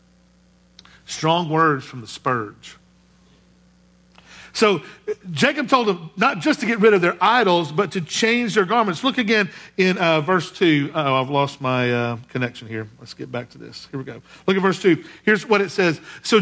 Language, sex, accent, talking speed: English, male, American, 190 wpm